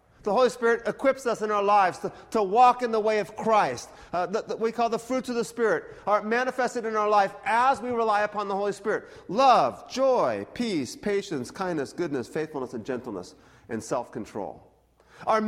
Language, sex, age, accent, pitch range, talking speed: English, male, 40-59, American, 185-230 Hz, 185 wpm